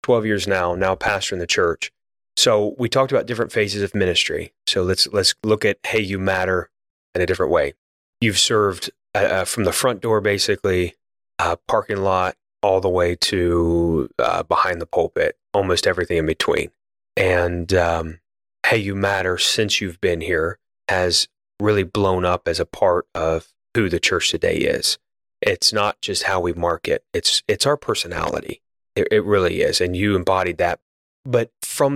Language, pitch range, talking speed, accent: English, 90-110 Hz, 175 wpm, American